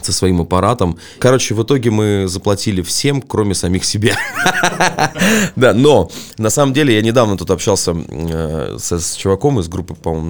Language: Russian